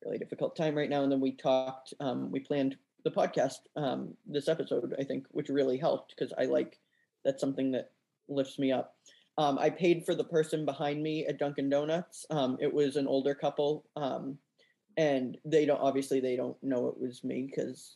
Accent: American